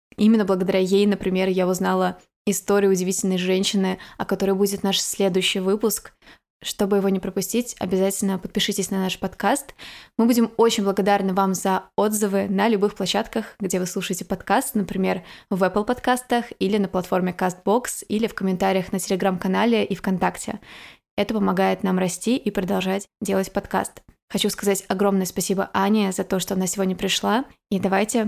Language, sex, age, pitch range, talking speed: Russian, female, 20-39, 190-220 Hz, 155 wpm